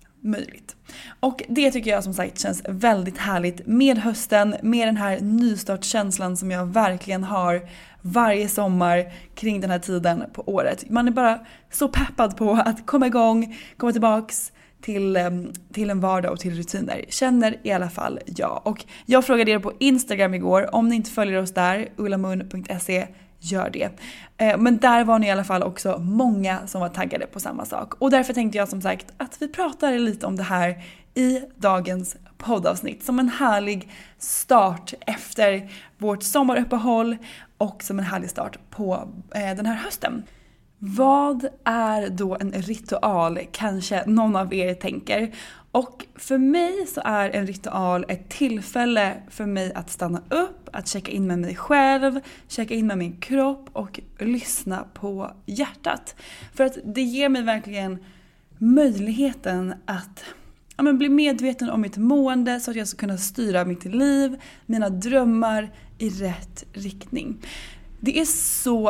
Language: Swedish